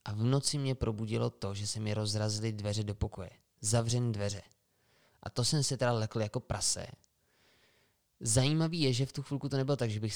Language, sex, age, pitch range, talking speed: Czech, male, 20-39, 105-135 Hz, 200 wpm